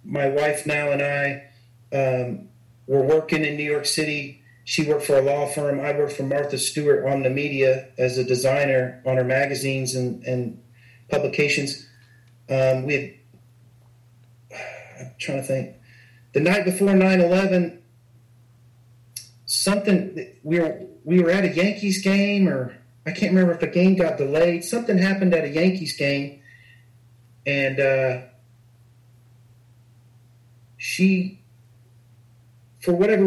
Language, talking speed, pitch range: English, 135 wpm, 120-175 Hz